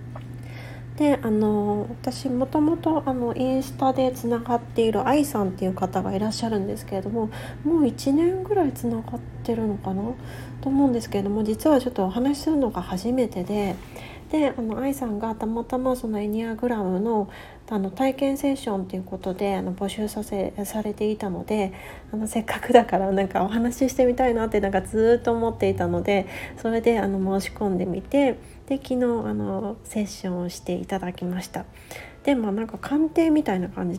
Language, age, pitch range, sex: Japanese, 40-59, 185-250 Hz, female